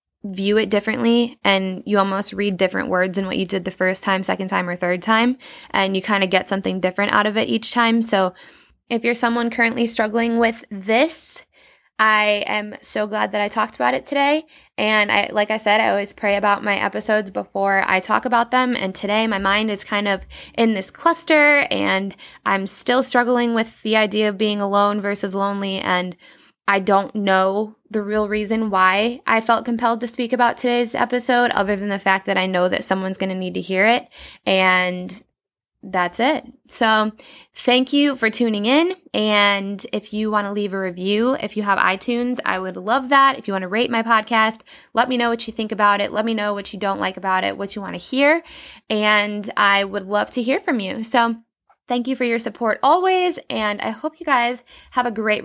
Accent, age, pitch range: American, 10-29, 195-240 Hz